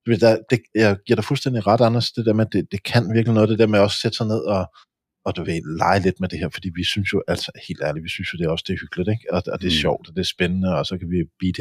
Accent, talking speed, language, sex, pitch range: Danish, 310 wpm, English, male, 95-120 Hz